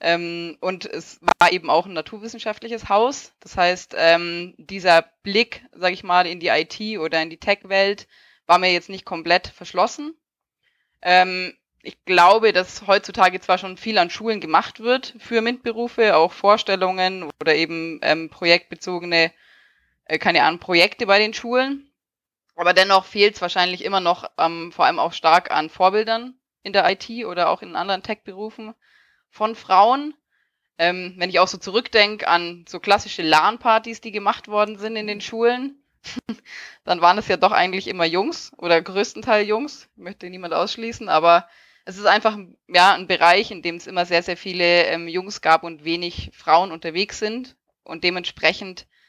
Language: German